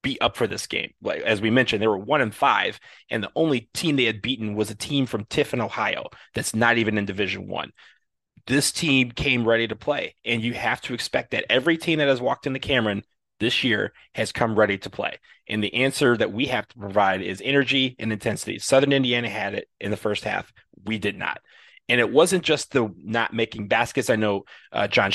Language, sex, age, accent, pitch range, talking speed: English, male, 30-49, American, 105-135 Hz, 225 wpm